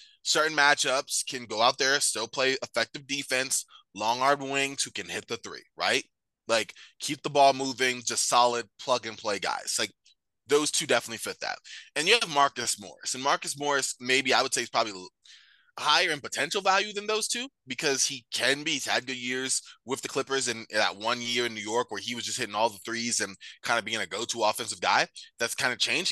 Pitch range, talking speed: 110-140 Hz, 220 wpm